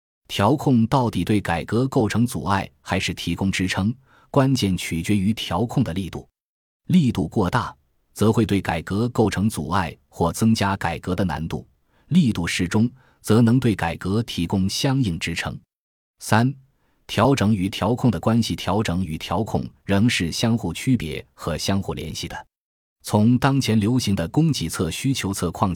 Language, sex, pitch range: Chinese, male, 85-115 Hz